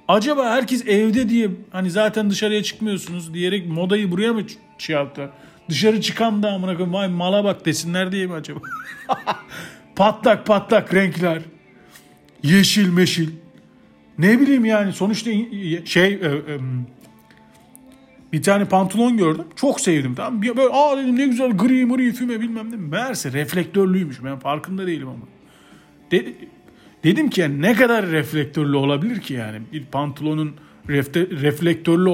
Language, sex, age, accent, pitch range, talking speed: Turkish, male, 40-59, native, 155-210 Hz, 145 wpm